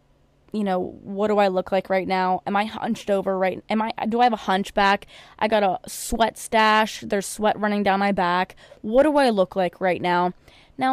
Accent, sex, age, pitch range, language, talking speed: American, female, 10-29, 190-220 Hz, English, 220 wpm